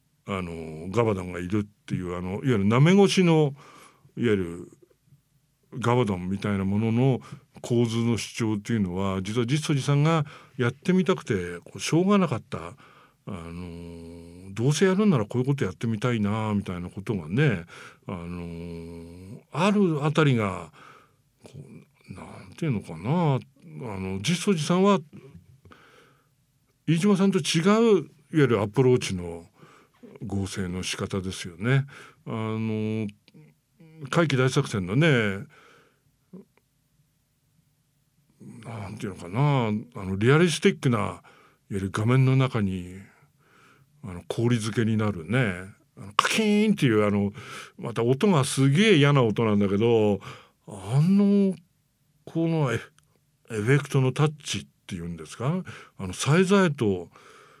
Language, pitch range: English, 100-150 Hz